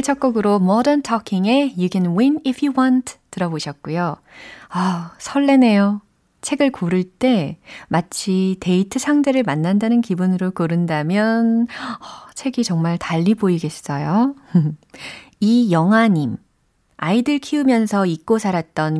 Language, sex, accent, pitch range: Korean, female, native, 165-245 Hz